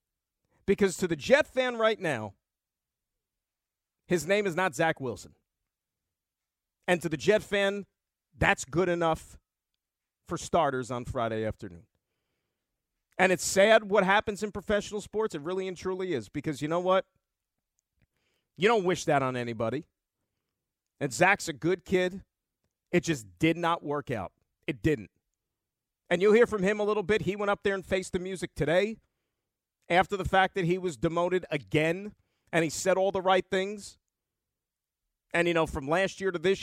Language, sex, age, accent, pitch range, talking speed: English, male, 40-59, American, 140-185 Hz, 165 wpm